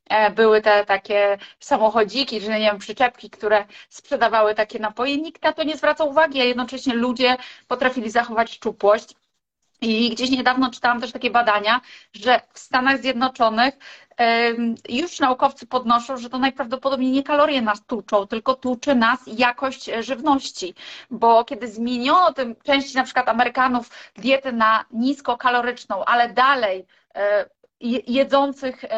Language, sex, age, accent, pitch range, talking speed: Polish, female, 30-49, native, 225-270 Hz, 135 wpm